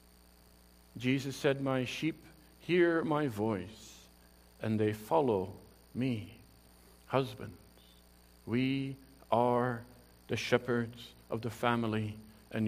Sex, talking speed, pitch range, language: male, 95 wpm, 110-155 Hz, English